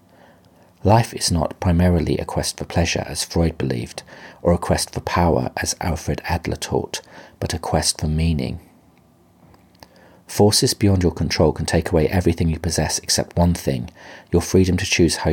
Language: English